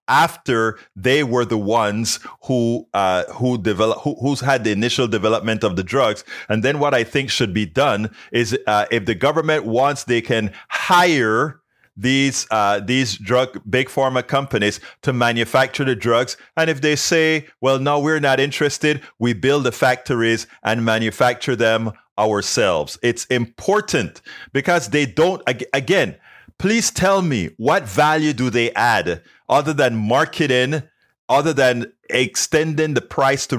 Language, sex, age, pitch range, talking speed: English, male, 30-49, 115-145 Hz, 155 wpm